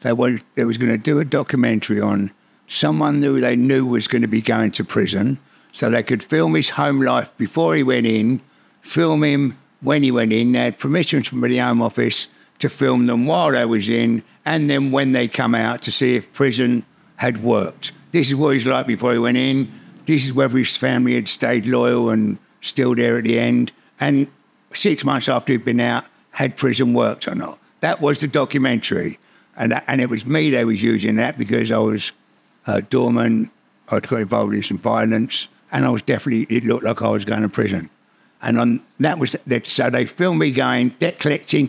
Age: 60-79